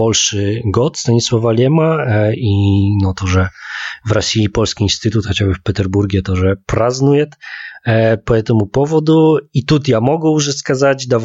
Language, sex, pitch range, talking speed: Russian, male, 105-130 Hz, 155 wpm